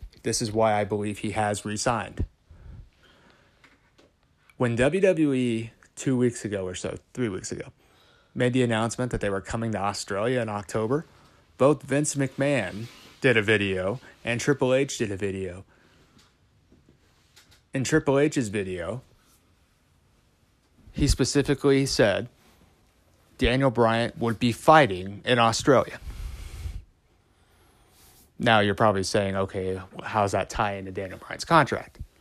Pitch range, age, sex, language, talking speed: 100-130 Hz, 30-49, male, English, 125 wpm